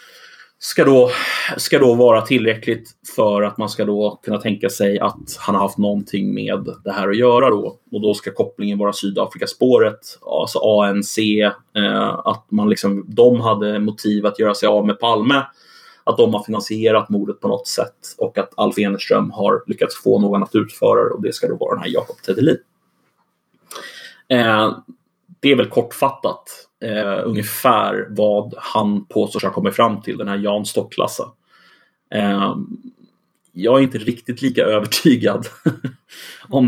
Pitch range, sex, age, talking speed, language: 105-125 Hz, male, 30-49, 160 wpm, Swedish